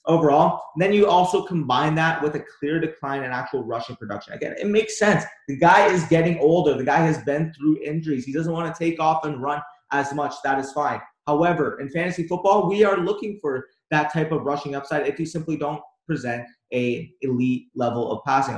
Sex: male